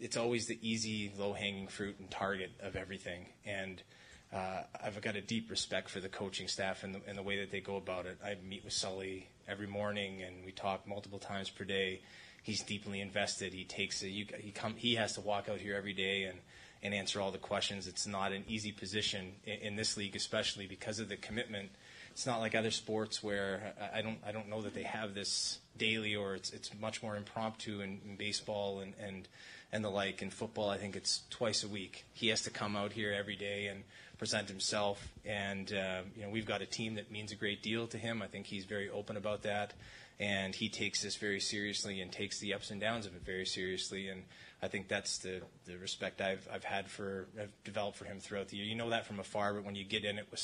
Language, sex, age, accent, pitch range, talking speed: English, male, 20-39, American, 95-105 Hz, 235 wpm